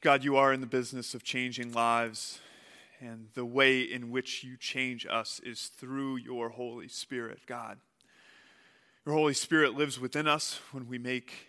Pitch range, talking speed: 120-145 Hz, 165 wpm